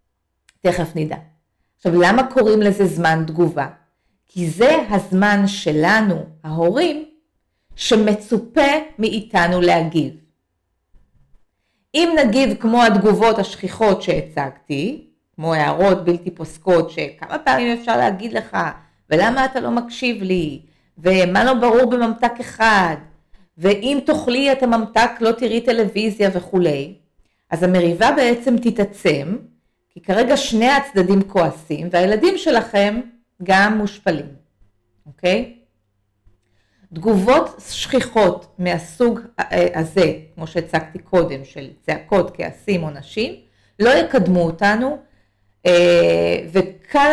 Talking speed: 100 wpm